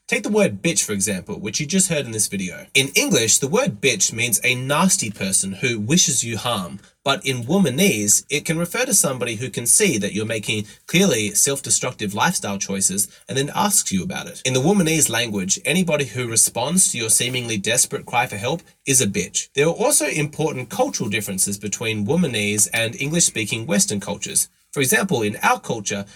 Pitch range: 105-170 Hz